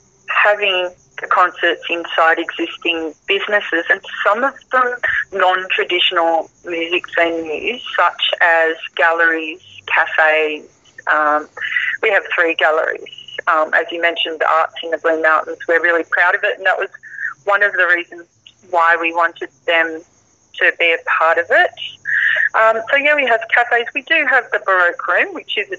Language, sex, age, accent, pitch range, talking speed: English, female, 30-49, Australian, 170-205 Hz, 160 wpm